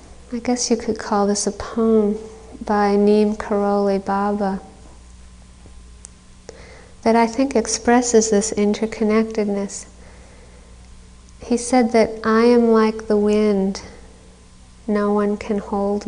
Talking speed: 110 wpm